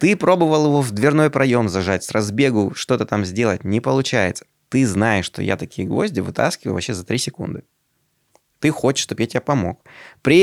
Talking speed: 185 wpm